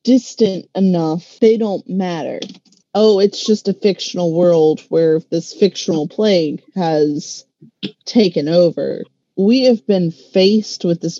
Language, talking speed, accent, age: English, 130 wpm, American, 30-49